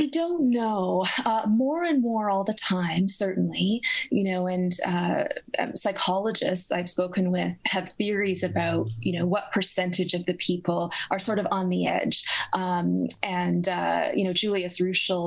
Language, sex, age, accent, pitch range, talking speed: English, female, 20-39, American, 180-205 Hz, 165 wpm